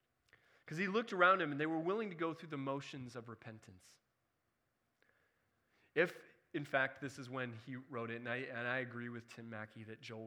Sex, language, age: male, English, 20-39